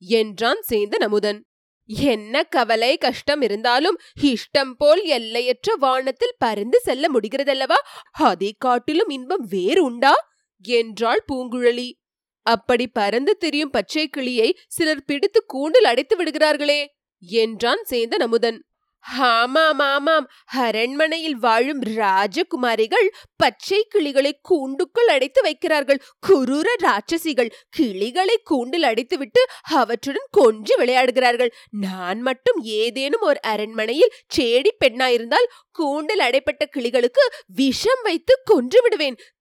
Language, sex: Tamil, female